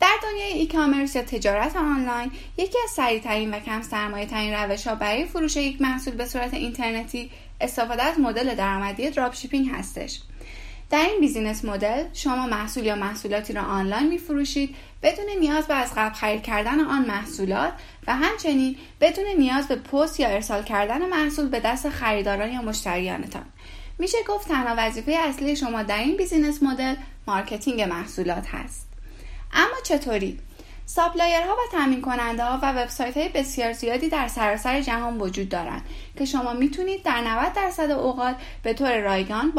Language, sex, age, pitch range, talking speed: Persian, female, 10-29, 215-300 Hz, 155 wpm